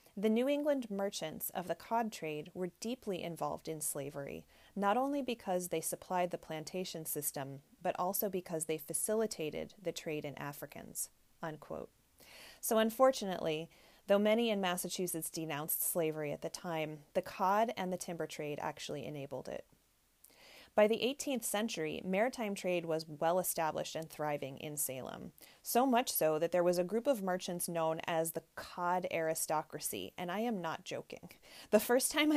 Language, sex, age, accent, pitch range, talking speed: English, female, 30-49, American, 160-225 Hz, 160 wpm